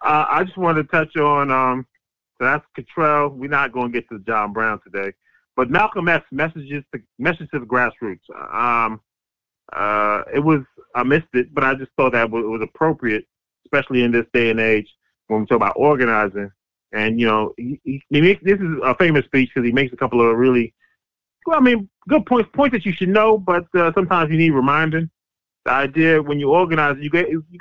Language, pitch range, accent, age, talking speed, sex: English, 120-160 Hz, American, 20-39, 210 wpm, male